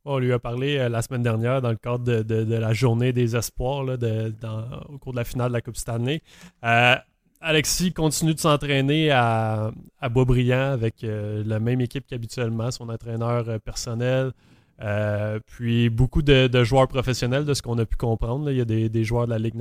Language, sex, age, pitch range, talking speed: French, male, 20-39, 115-130 Hz, 215 wpm